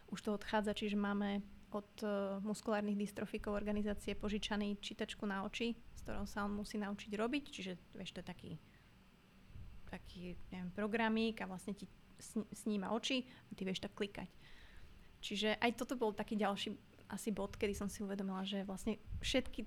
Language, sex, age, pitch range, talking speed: Slovak, female, 30-49, 200-220 Hz, 165 wpm